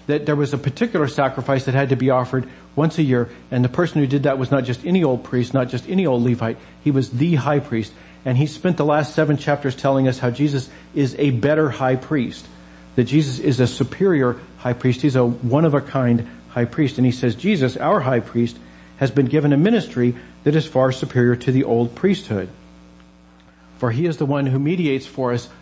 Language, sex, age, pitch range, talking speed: English, male, 50-69, 120-145 Hz, 220 wpm